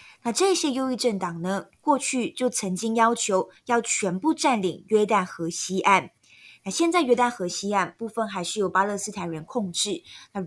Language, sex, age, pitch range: Chinese, female, 20-39, 185-240 Hz